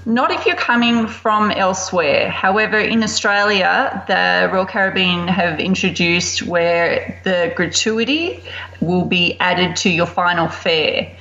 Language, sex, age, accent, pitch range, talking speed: English, female, 30-49, Australian, 170-210 Hz, 130 wpm